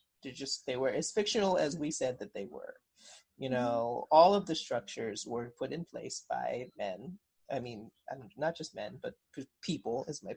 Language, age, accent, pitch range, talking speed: English, 30-49, American, 125-190 Hz, 205 wpm